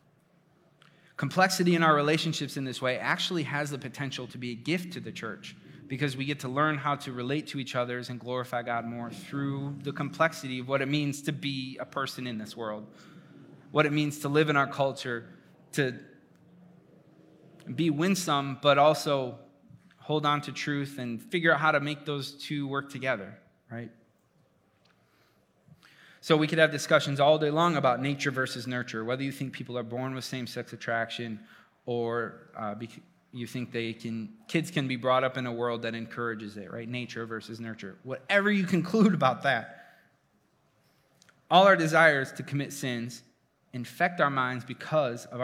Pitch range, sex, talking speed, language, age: 125-155 Hz, male, 175 wpm, English, 20-39